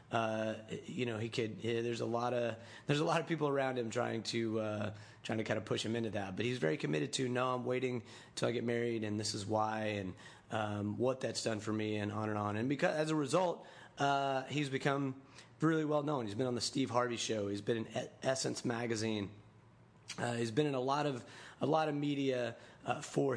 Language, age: English, 30-49